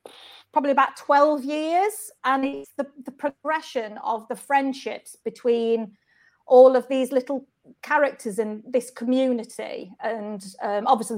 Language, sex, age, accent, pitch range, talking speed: English, female, 40-59, British, 230-300 Hz, 130 wpm